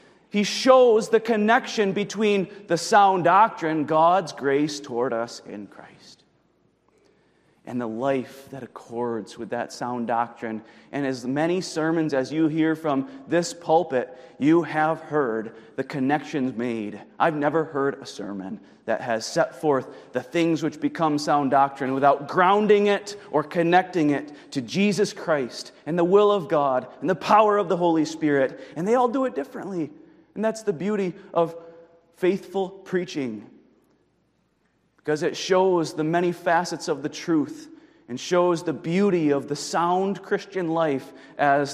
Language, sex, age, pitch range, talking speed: English, male, 30-49, 135-180 Hz, 155 wpm